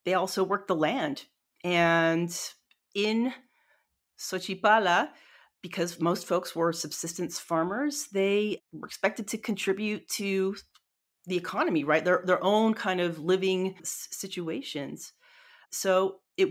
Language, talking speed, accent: English, 115 wpm, American